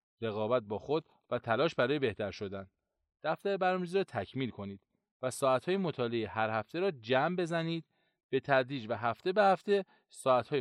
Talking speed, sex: 160 wpm, male